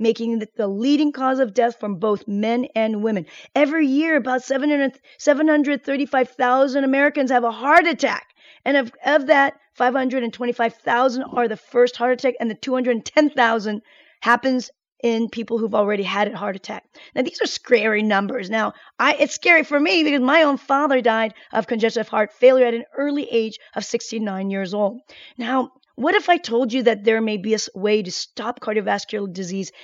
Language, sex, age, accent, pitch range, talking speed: English, female, 40-59, American, 225-285 Hz, 175 wpm